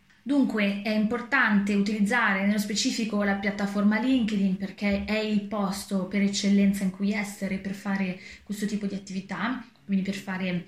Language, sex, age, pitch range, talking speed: Italian, female, 20-39, 195-215 Hz, 150 wpm